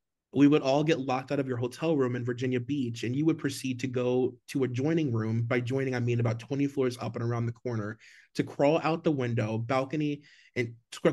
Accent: American